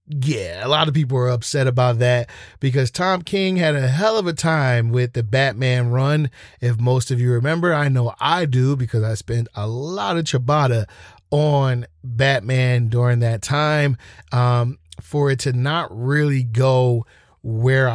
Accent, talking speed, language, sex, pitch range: American, 170 wpm, English, male, 120-150 Hz